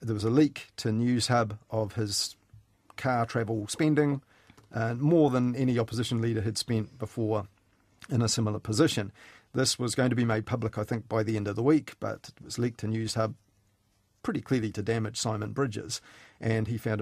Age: 40-59